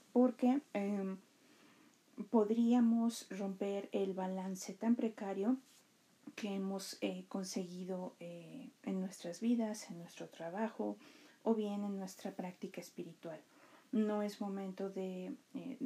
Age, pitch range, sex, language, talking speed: 40-59, 180-230 Hz, female, Spanish, 115 wpm